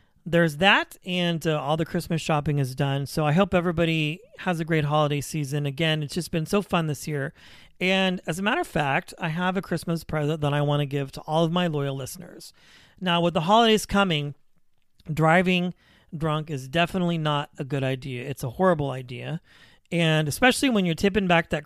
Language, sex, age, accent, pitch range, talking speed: English, male, 40-59, American, 150-185 Hz, 200 wpm